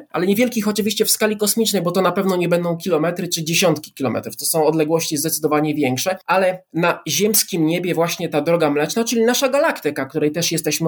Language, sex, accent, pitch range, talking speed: Polish, male, native, 155-225 Hz, 195 wpm